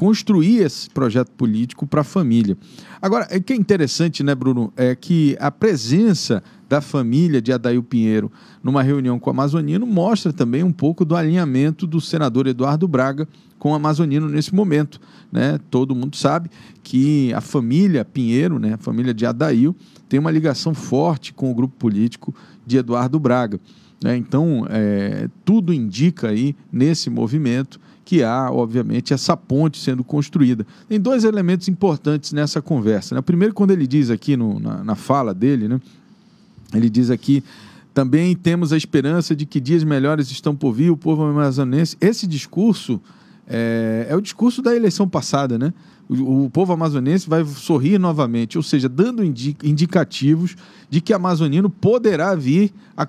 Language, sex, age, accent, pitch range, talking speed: Portuguese, male, 40-59, Brazilian, 130-180 Hz, 165 wpm